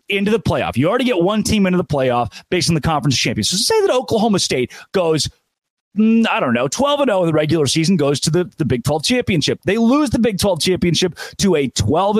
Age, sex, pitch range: 30-49, male, 135-195 Hz